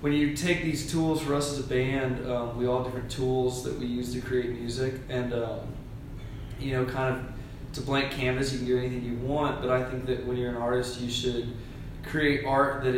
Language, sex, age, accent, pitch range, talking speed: English, male, 20-39, American, 115-130 Hz, 230 wpm